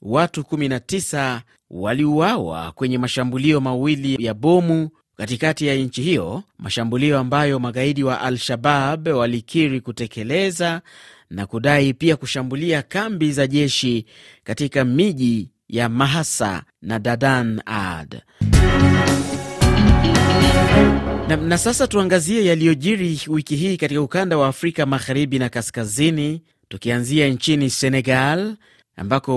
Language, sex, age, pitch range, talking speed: Swahili, male, 30-49, 115-150 Hz, 105 wpm